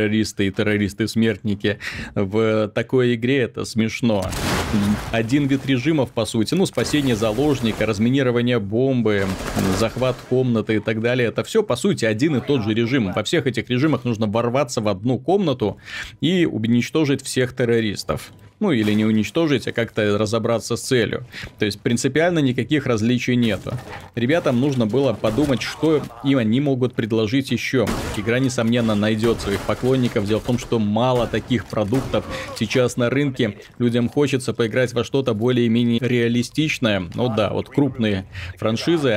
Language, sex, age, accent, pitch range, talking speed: Russian, male, 30-49, native, 110-130 Hz, 150 wpm